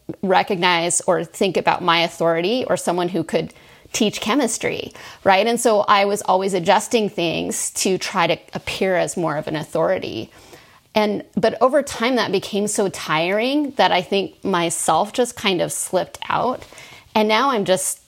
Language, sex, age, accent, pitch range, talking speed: English, female, 30-49, American, 170-215 Hz, 165 wpm